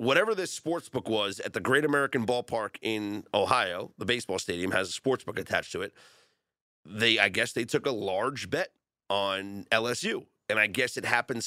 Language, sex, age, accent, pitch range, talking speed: English, male, 30-49, American, 120-170 Hz, 195 wpm